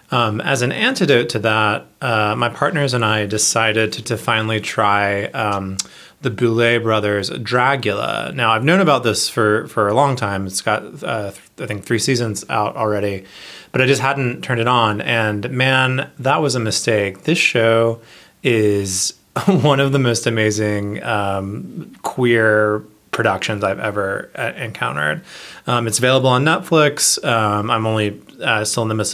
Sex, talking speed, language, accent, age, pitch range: male, 170 wpm, English, American, 20-39, 105-130 Hz